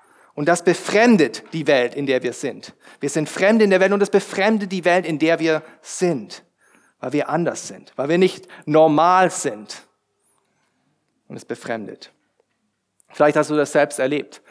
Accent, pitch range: German, 140-180 Hz